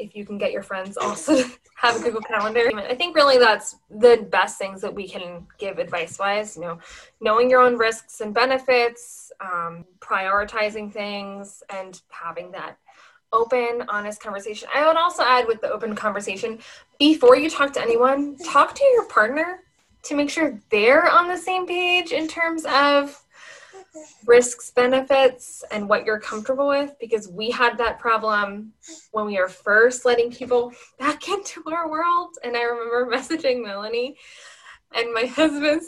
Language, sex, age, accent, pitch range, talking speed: English, female, 10-29, American, 215-295 Hz, 165 wpm